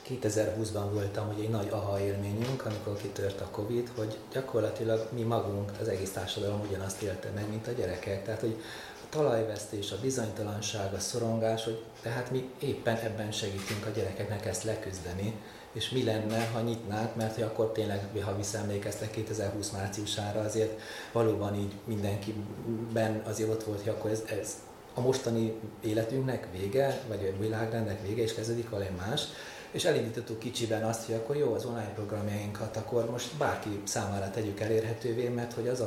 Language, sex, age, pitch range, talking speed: Hungarian, male, 30-49, 100-115 Hz, 165 wpm